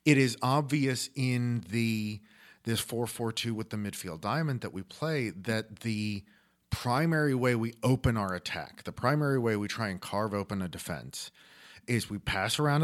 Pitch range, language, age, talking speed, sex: 100-125 Hz, English, 40-59, 170 wpm, male